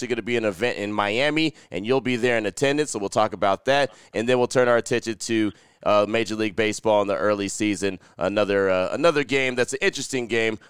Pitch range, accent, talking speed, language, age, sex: 105-125 Hz, American, 230 wpm, English, 30-49, male